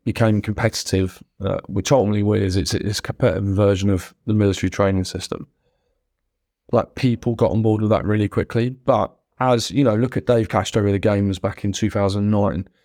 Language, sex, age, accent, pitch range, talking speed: English, male, 20-39, British, 100-115 Hz, 180 wpm